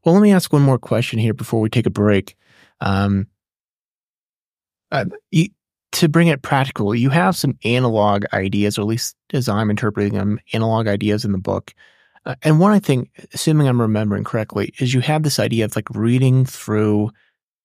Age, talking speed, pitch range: 30-49, 185 wpm, 105-140 Hz